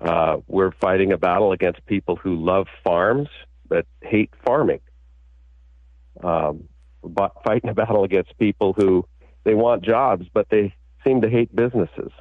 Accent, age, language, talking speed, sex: American, 50-69, English, 145 wpm, male